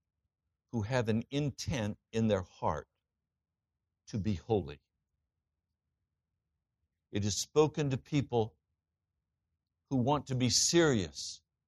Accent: American